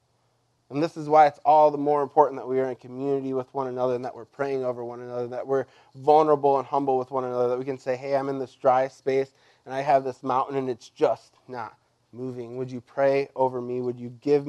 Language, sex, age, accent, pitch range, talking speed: English, male, 20-39, American, 125-145 Hz, 250 wpm